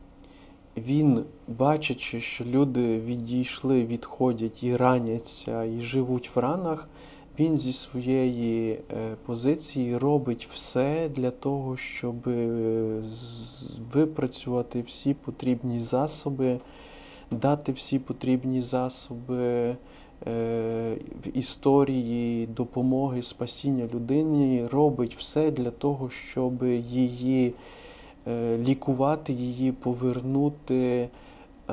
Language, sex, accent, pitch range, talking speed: Ukrainian, male, native, 120-140 Hz, 80 wpm